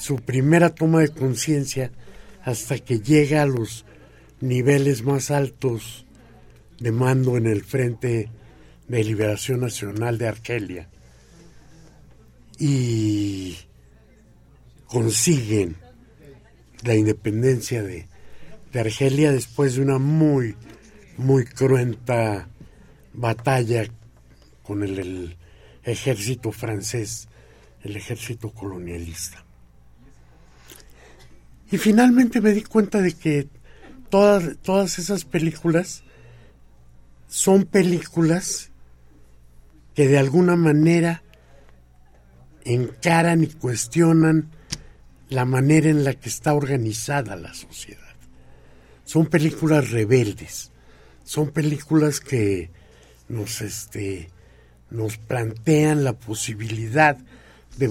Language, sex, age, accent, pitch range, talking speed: Spanish, male, 60-79, Mexican, 100-145 Hz, 90 wpm